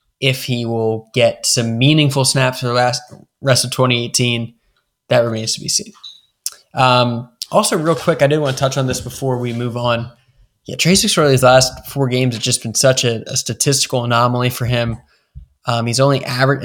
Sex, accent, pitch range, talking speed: male, American, 120-140 Hz, 195 wpm